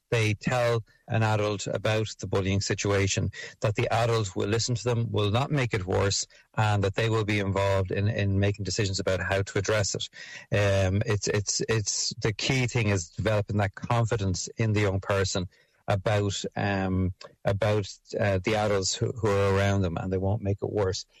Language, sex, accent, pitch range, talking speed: English, male, Irish, 100-115 Hz, 190 wpm